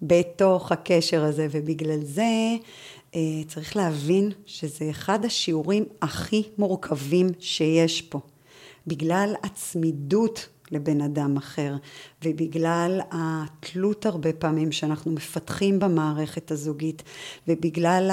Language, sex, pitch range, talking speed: Hebrew, female, 160-200 Hz, 95 wpm